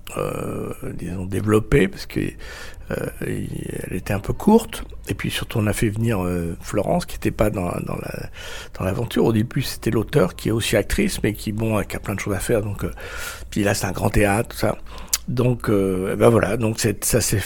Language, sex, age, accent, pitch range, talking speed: French, male, 60-79, French, 95-120 Hz, 225 wpm